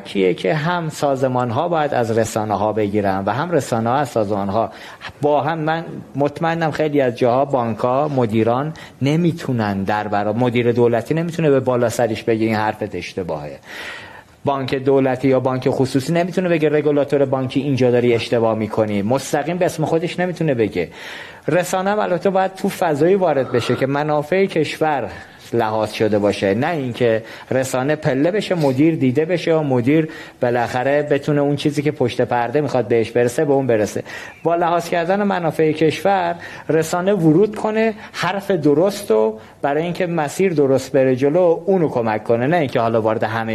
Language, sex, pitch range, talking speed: Persian, male, 115-160 Hz, 165 wpm